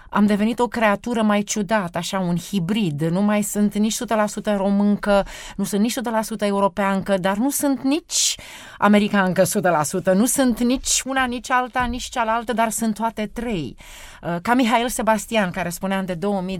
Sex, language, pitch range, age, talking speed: female, Romanian, 190-250 Hz, 30-49, 165 wpm